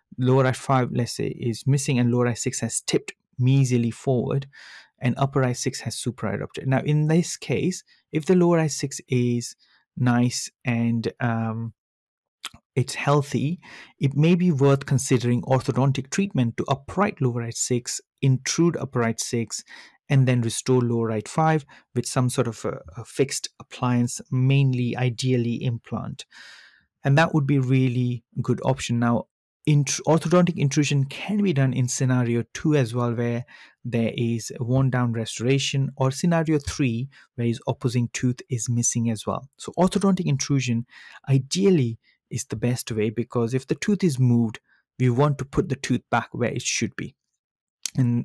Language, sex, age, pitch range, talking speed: English, male, 30-49, 120-145 Hz, 160 wpm